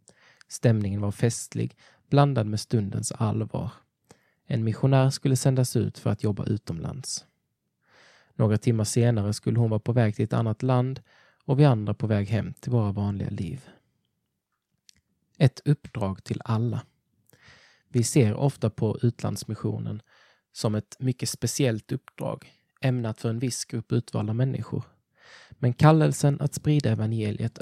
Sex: male